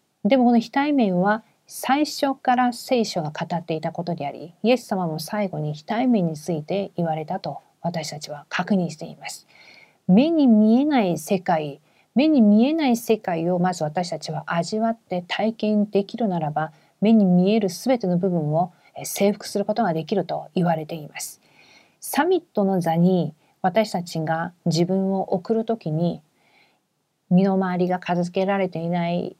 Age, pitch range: 40-59, 170-225 Hz